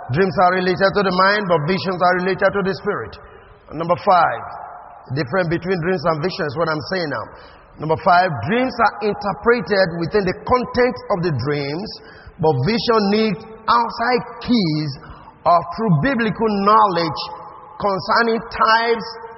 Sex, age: male, 30-49